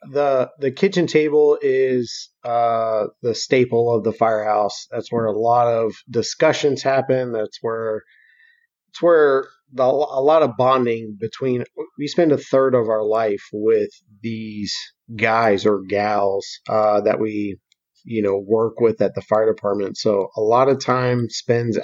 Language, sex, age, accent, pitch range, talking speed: English, male, 30-49, American, 110-140 Hz, 155 wpm